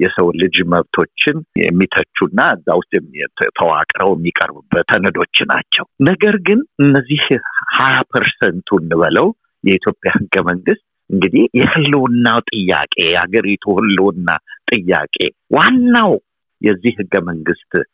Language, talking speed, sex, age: Amharic, 90 wpm, male, 50-69